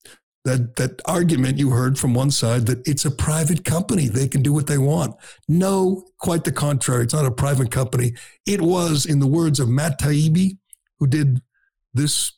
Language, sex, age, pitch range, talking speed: English, male, 60-79, 130-155 Hz, 190 wpm